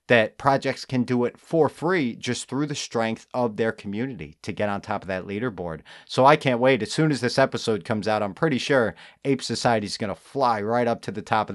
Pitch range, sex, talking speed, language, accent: 105-130 Hz, male, 245 wpm, English, American